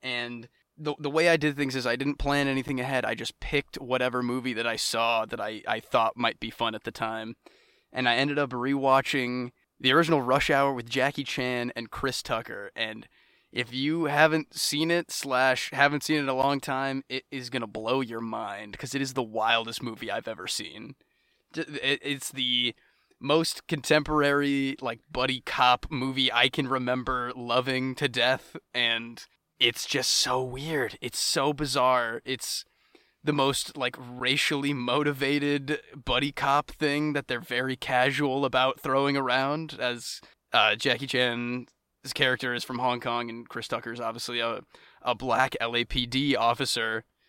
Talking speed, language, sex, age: 170 wpm, English, male, 20-39